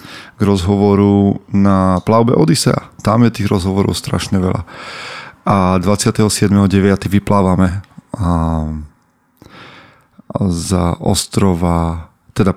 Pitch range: 90-100 Hz